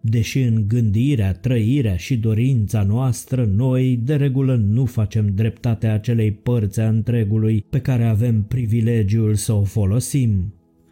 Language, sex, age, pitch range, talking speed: Romanian, male, 20-39, 105-120 Hz, 130 wpm